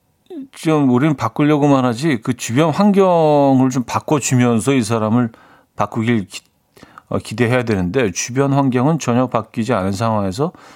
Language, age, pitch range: Korean, 40-59, 110-145 Hz